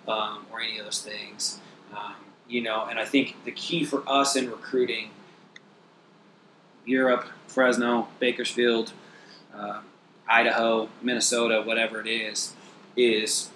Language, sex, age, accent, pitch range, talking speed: English, male, 30-49, American, 110-130 Hz, 125 wpm